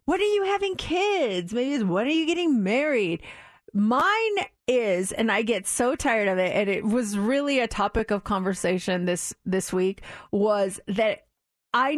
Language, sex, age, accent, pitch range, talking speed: English, female, 30-49, American, 220-315 Hz, 175 wpm